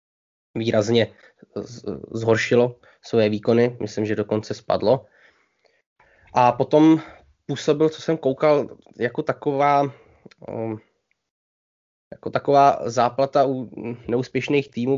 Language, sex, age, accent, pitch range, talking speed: Czech, male, 20-39, native, 110-130 Hz, 90 wpm